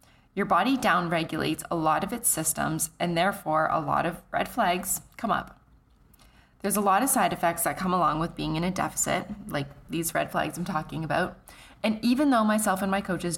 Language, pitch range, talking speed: English, 160-195 Hz, 205 wpm